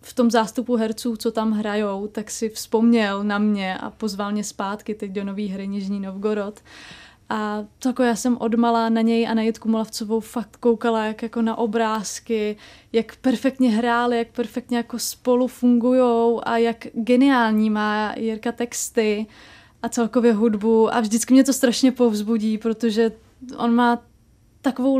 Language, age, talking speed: Czech, 20-39, 160 wpm